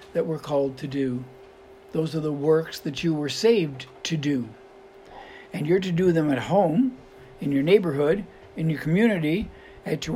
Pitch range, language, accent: 145-195 Hz, English, American